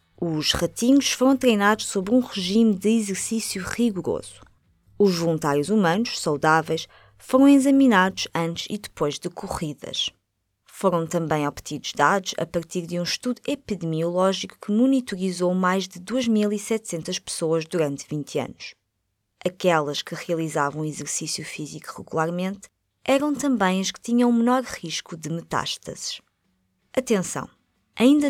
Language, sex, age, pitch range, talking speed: Portuguese, female, 20-39, 155-210 Hz, 120 wpm